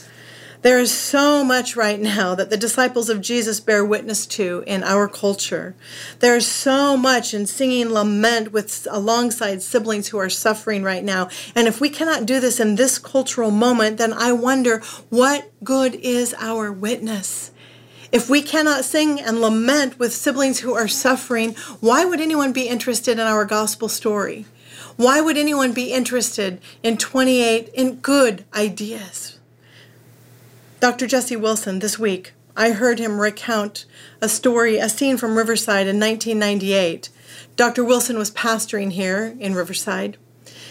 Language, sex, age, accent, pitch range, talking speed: English, female, 40-59, American, 210-245 Hz, 155 wpm